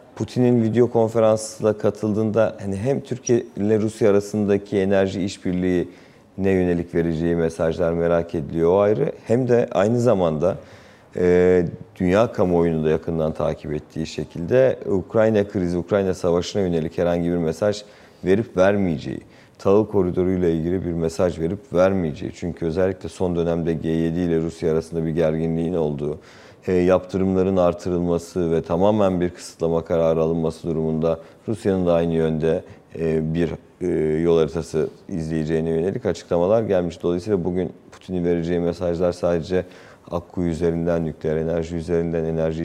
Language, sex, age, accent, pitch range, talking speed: Turkish, male, 40-59, native, 80-95 Hz, 135 wpm